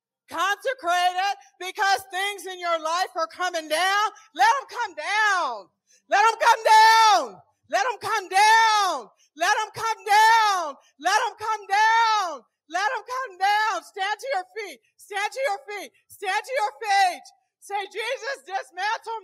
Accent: American